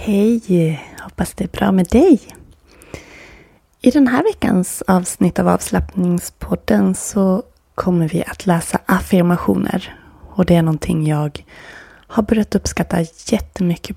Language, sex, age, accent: Swedish, female, 20-39, native